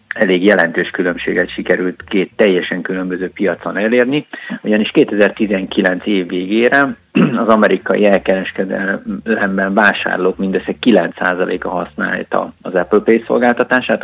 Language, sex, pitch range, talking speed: Hungarian, male, 90-105 Hz, 105 wpm